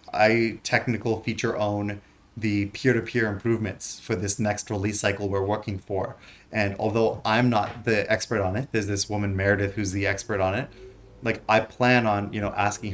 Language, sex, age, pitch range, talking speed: English, male, 20-39, 100-110 Hz, 190 wpm